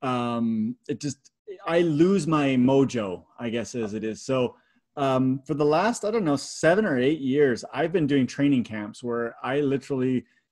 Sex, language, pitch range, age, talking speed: male, English, 125-150 Hz, 30-49, 185 wpm